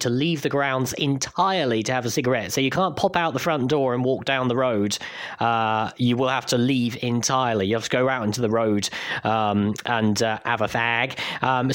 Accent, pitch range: British, 120-185 Hz